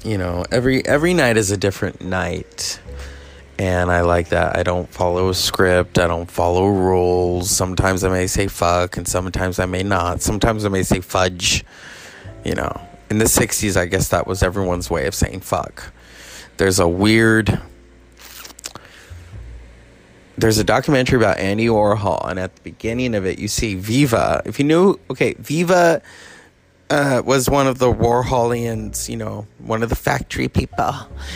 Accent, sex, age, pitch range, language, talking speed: American, male, 20-39, 90-120 Hz, English, 165 wpm